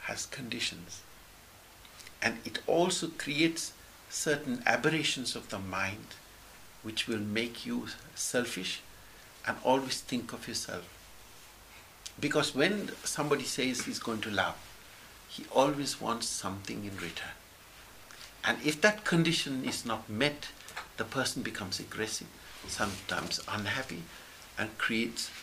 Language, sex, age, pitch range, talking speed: English, male, 60-79, 105-155 Hz, 120 wpm